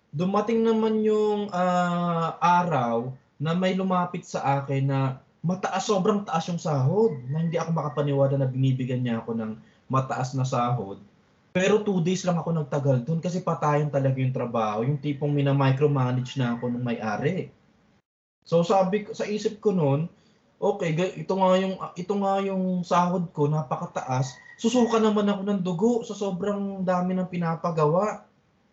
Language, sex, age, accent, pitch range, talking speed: Filipino, male, 20-39, native, 135-185 Hz, 155 wpm